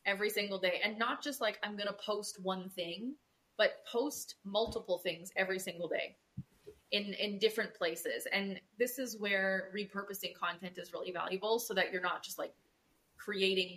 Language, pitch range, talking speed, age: English, 185-215 Hz, 175 wpm, 20-39